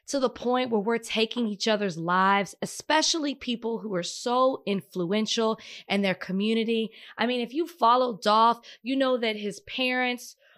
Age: 20-39